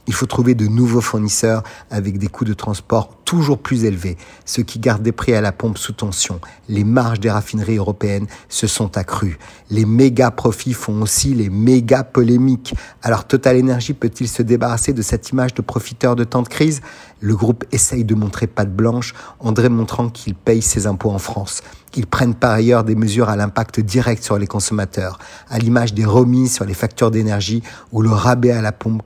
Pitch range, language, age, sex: 105-125 Hz, French, 50-69, male